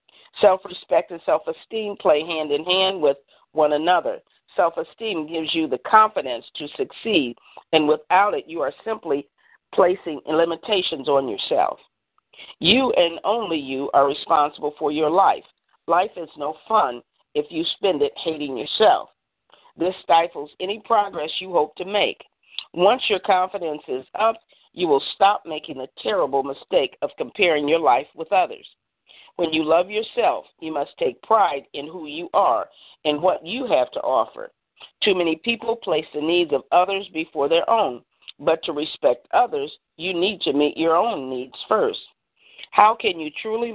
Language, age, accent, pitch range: English, 50-69, American, 155-210 Hz